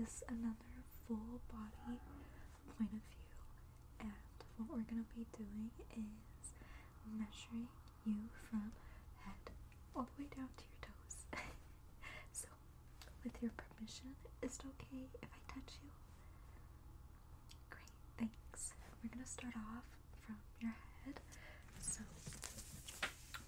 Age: 20-39